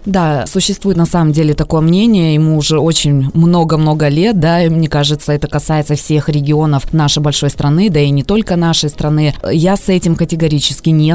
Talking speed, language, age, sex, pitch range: 185 wpm, Russian, 20-39, female, 140-165 Hz